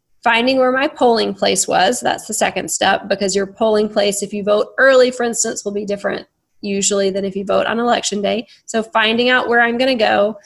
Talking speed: 225 wpm